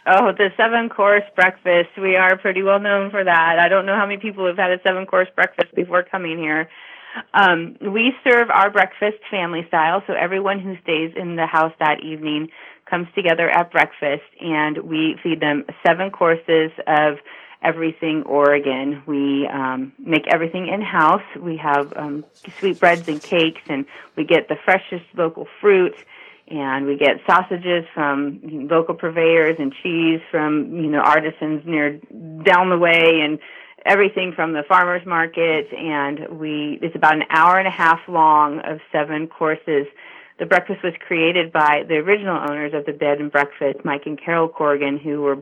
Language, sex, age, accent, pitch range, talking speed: English, female, 30-49, American, 150-185 Hz, 170 wpm